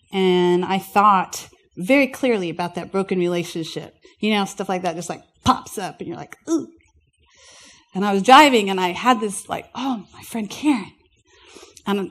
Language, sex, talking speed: English, female, 180 wpm